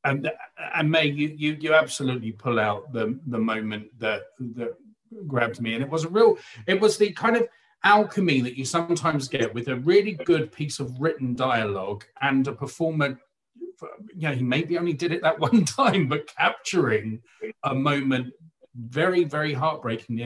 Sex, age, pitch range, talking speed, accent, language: male, 40-59, 115-160 Hz, 170 wpm, British, English